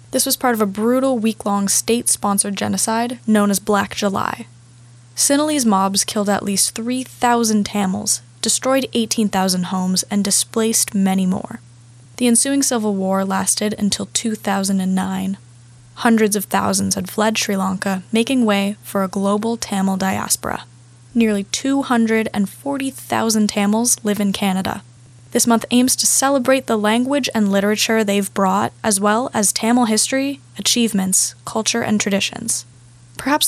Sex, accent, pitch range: female, American, 190-235 Hz